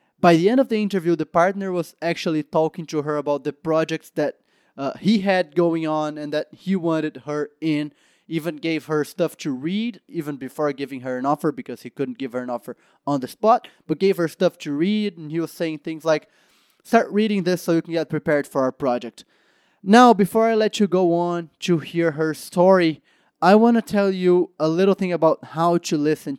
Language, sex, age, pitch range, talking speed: English, male, 20-39, 155-185 Hz, 220 wpm